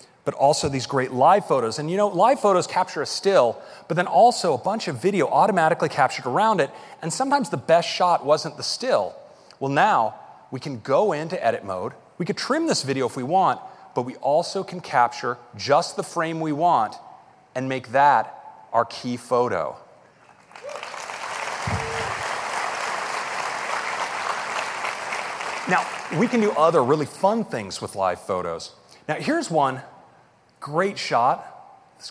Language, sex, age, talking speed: English, male, 40-59, 155 wpm